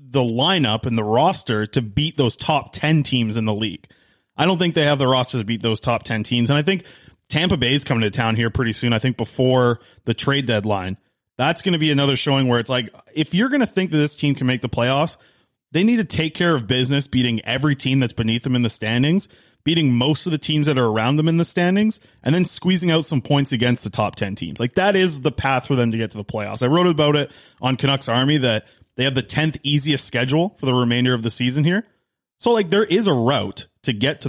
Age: 30-49